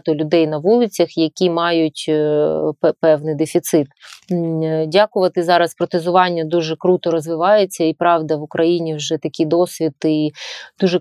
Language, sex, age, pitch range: Ukrainian, female, 30-49, 160-180 Hz